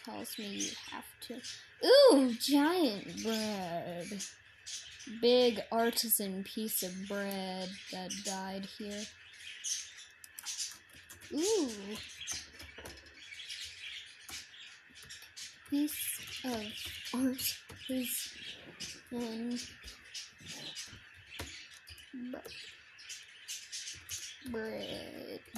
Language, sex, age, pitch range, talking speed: English, female, 10-29, 205-285 Hz, 50 wpm